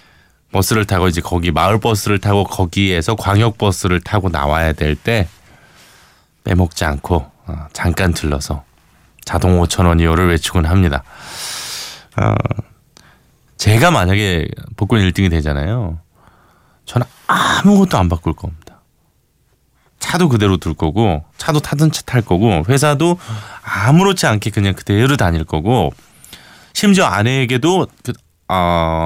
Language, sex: Korean, male